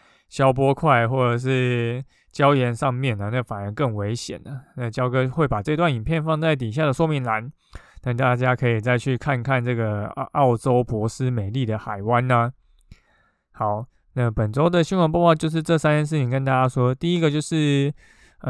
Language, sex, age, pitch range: Chinese, male, 20-39, 120-150 Hz